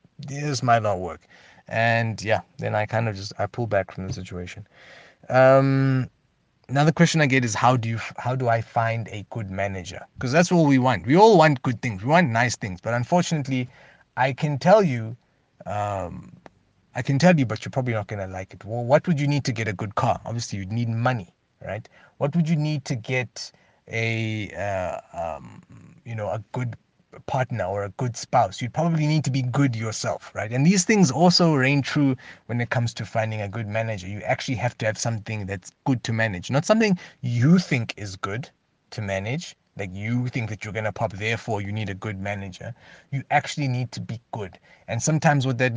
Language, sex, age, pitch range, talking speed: English, male, 30-49, 110-140 Hz, 210 wpm